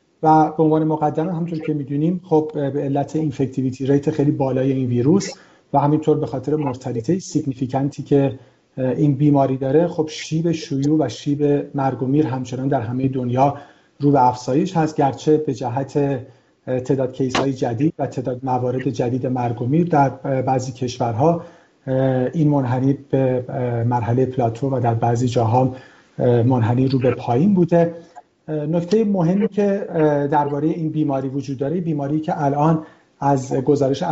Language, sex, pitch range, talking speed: Persian, male, 135-155 Hz, 140 wpm